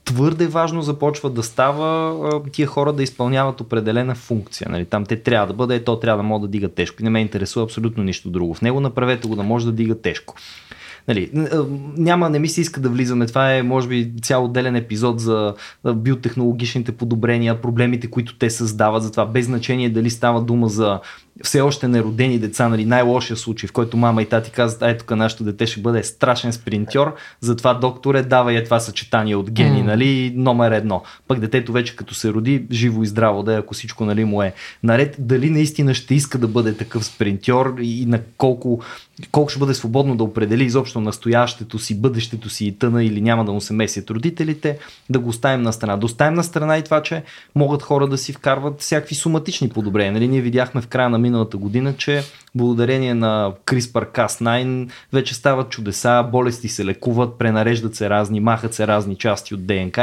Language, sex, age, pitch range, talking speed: Bulgarian, male, 20-39, 110-130 Hz, 195 wpm